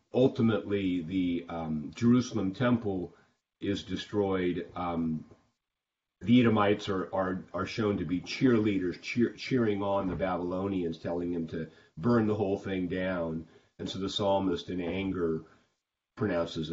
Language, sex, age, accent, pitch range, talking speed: English, male, 40-59, American, 90-110 Hz, 125 wpm